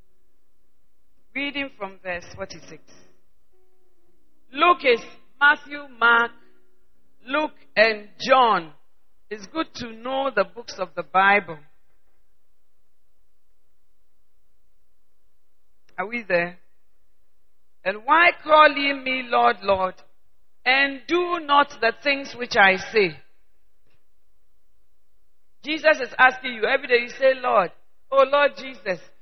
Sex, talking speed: female, 100 wpm